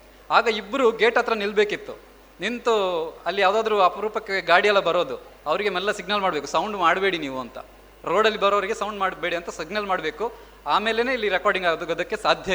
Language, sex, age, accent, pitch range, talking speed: Kannada, male, 20-39, native, 170-225 Hz, 155 wpm